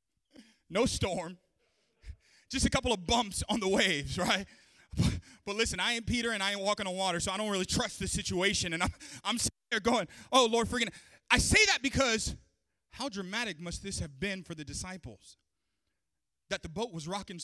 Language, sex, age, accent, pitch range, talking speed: English, male, 30-49, American, 140-220 Hz, 200 wpm